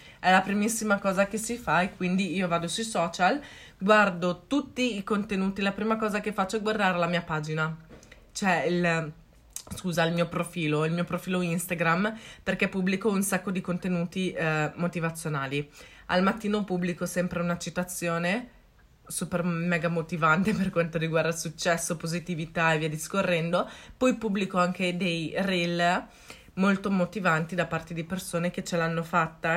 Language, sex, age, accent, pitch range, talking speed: Italian, female, 20-39, native, 165-195 Hz, 155 wpm